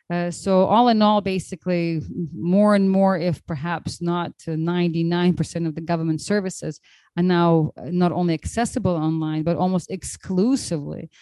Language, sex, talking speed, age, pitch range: English, female, 145 wpm, 30-49, 160-185 Hz